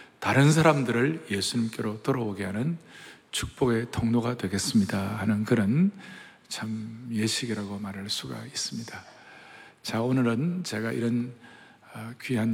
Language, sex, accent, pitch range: Korean, male, native, 110-135 Hz